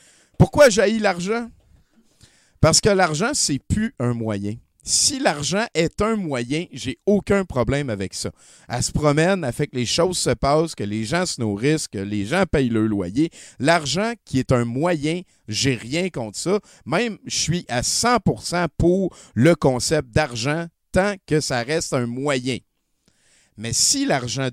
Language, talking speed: French, 165 wpm